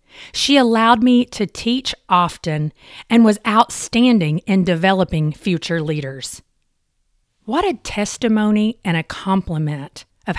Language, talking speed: English, 115 wpm